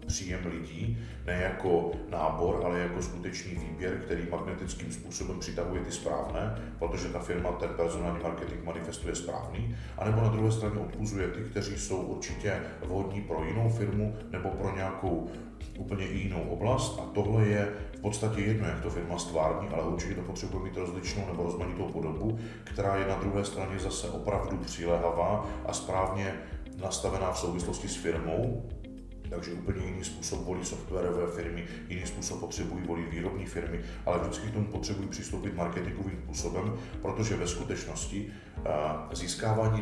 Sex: male